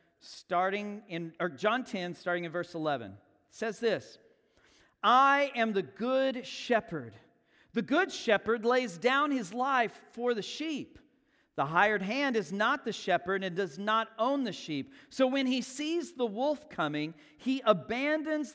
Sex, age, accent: male, 40-59, American